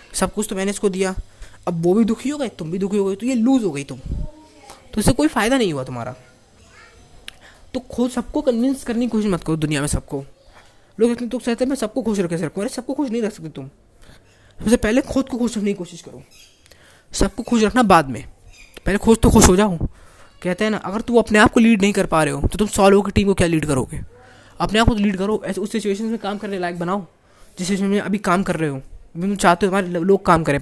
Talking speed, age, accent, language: 250 wpm, 20-39, native, Hindi